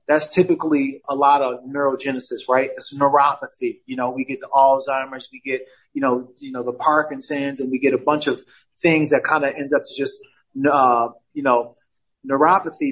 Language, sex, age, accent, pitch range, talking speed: English, male, 20-39, American, 130-155 Hz, 190 wpm